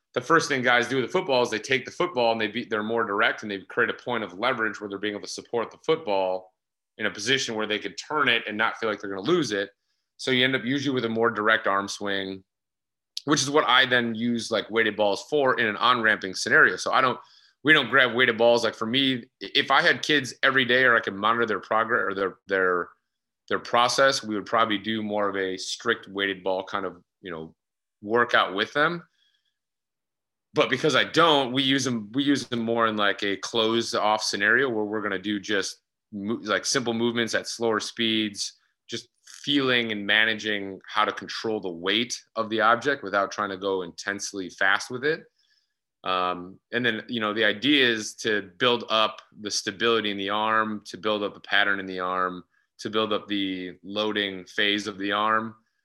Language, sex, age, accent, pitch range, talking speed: English, male, 30-49, American, 100-120 Hz, 220 wpm